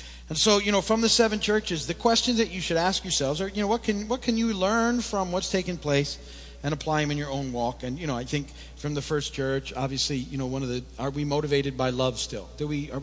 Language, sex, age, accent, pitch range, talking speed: English, male, 50-69, American, 105-150 Hz, 270 wpm